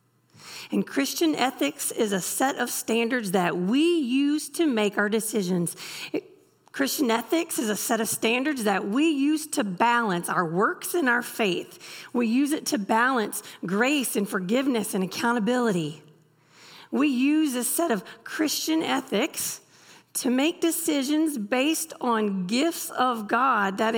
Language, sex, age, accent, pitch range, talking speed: English, female, 40-59, American, 180-285 Hz, 145 wpm